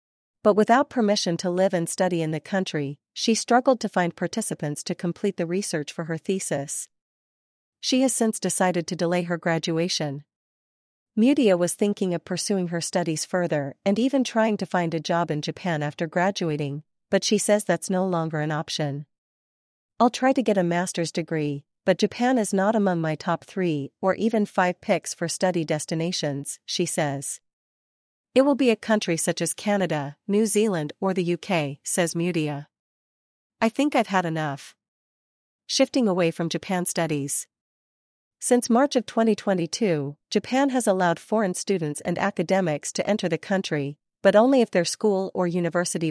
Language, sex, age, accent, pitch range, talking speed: English, female, 40-59, American, 160-205 Hz, 165 wpm